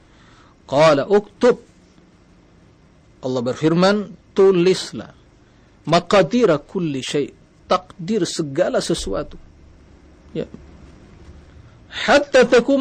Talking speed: 60 wpm